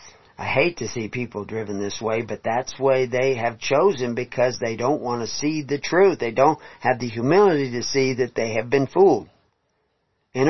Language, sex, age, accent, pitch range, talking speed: English, male, 50-69, American, 115-155 Hz, 205 wpm